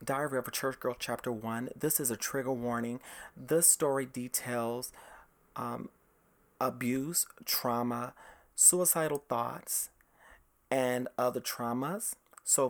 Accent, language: American, English